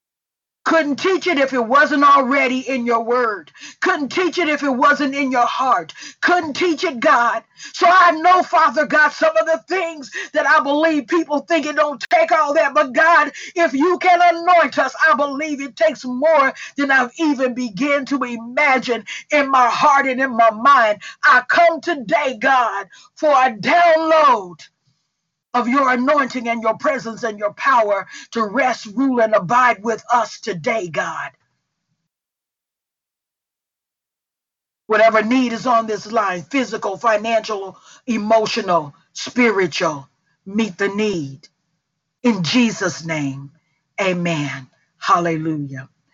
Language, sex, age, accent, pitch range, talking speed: English, female, 50-69, American, 210-300 Hz, 145 wpm